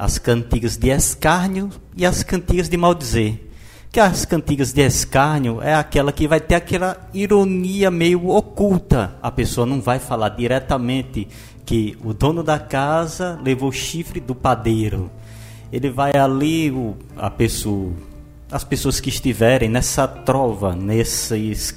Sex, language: male, Portuguese